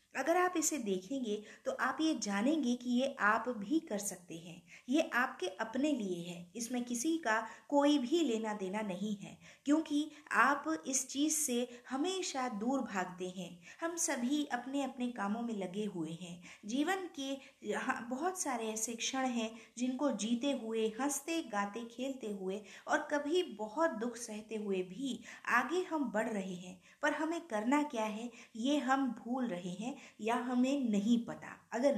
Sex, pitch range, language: female, 215-285 Hz, Hindi